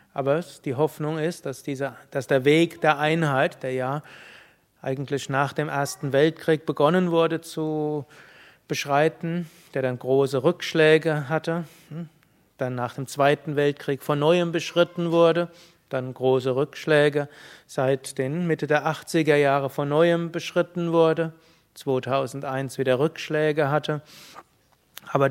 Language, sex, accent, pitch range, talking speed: German, male, German, 140-165 Hz, 125 wpm